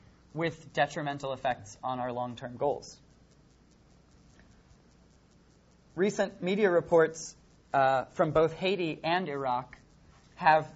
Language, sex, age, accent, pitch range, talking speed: English, male, 30-49, American, 140-175 Hz, 95 wpm